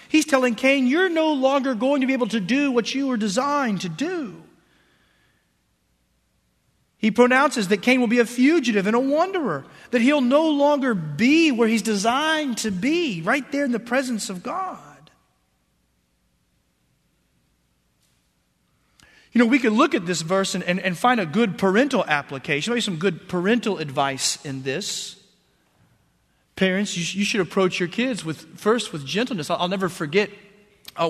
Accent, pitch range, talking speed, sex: American, 150-240 Hz, 160 wpm, male